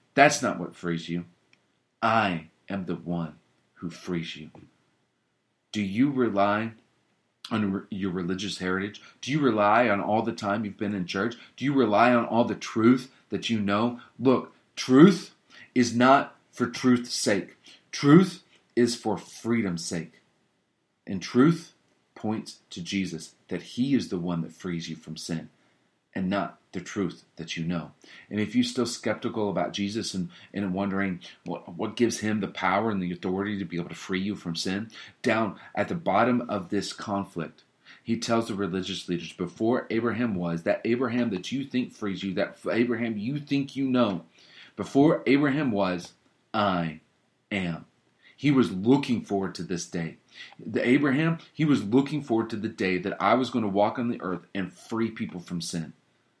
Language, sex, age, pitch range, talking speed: English, male, 40-59, 90-120 Hz, 175 wpm